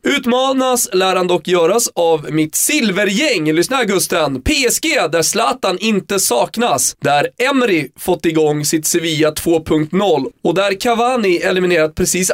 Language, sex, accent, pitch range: Swedish, male, native, 160-210 Hz